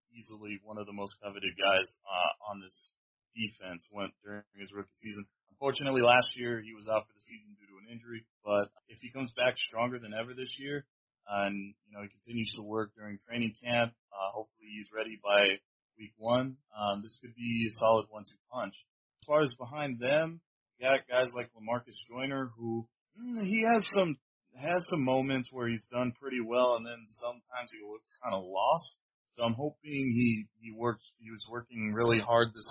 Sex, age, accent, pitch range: male, 20-39, American, 105-125 Hz